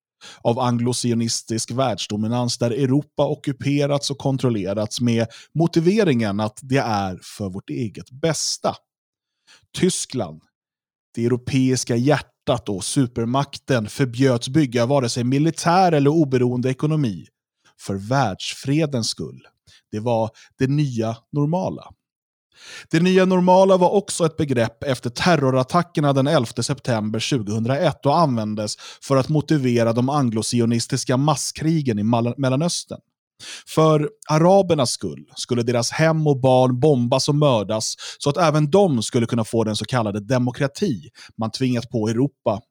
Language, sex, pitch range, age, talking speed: Swedish, male, 115-150 Hz, 30-49, 125 wpm